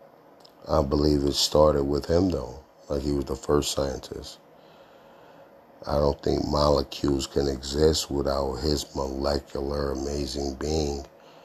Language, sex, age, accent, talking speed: English, male, 50-69, American, 125 wpm